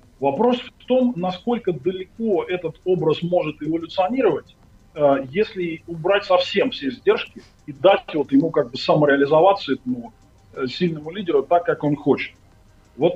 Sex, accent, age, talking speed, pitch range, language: male, native, 20-39, 130 wpm, 135-185 Hz, Russian